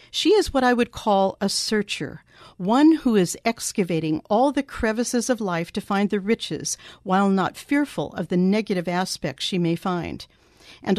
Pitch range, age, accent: 180-235 Hz, 50-69, American